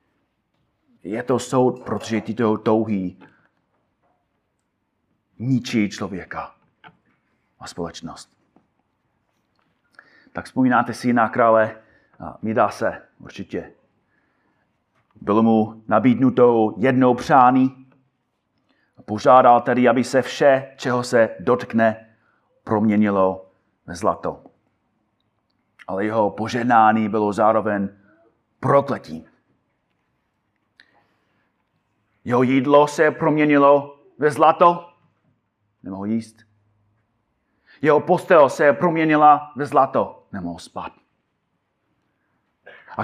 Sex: male